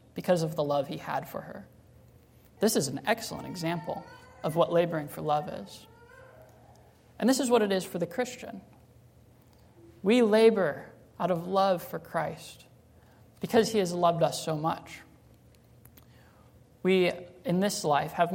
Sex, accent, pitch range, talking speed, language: male, American, 145-195 Hz, 155 wpm, English